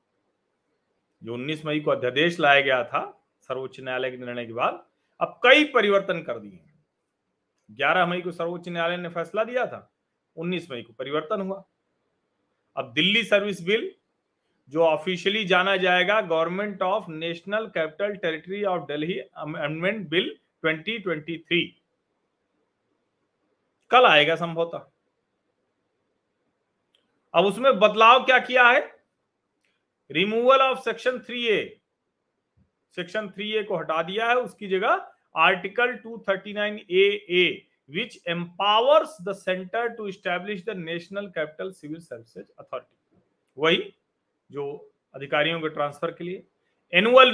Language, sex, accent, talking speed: Hindi, male, native, 115 wpm